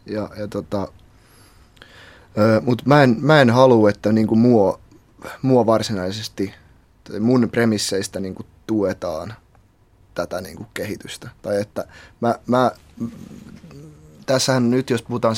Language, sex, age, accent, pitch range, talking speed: Finnish, male, 20-39, native, 100-115 Hz, 105 wpm